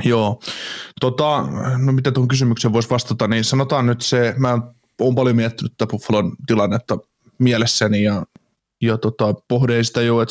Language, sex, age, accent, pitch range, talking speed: Finnish, male, 20-39, native, 110-125 Hz, 155 wpm